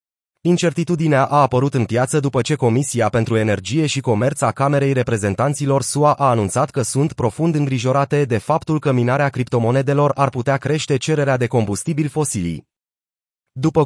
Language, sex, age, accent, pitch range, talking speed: Romanian, male, 30-49, native, 120-150 Hz, 150 wpm